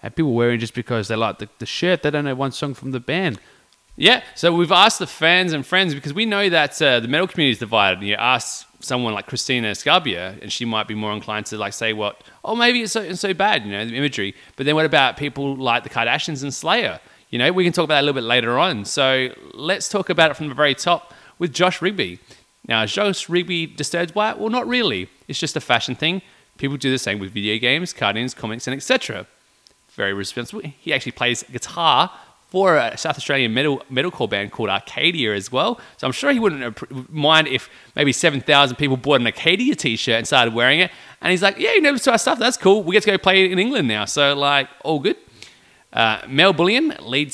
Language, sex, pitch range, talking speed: English, male, 120-180 Hz, 235 wpm